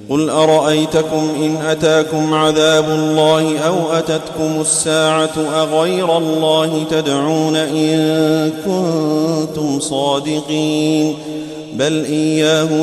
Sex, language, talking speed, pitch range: male, Arabic, 80 wpm, 135-155 Hz